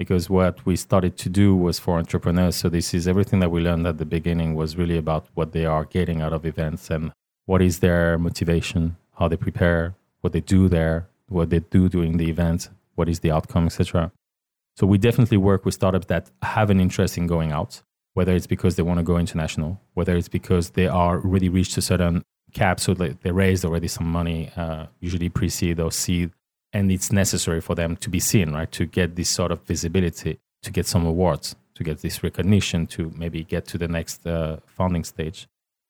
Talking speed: 210 wpm